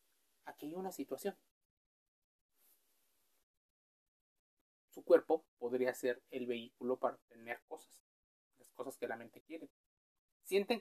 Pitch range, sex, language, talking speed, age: 125-175 Hz, male, Spanish, 110 wpm, 30-49